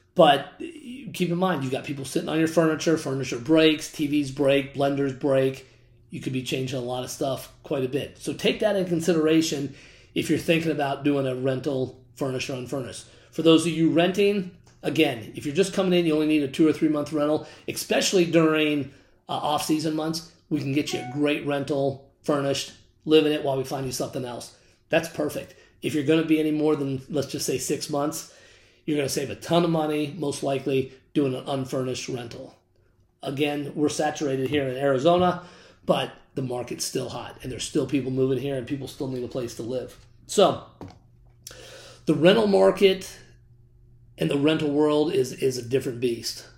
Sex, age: male, 30-49